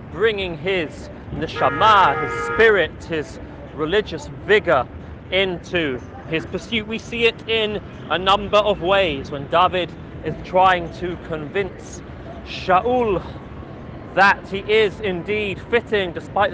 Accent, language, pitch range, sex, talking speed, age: British, English, 160-210 Hz, male, 115 wpm, 30-49